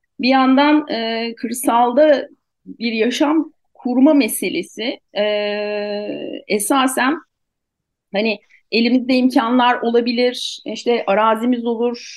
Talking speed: 85 wpm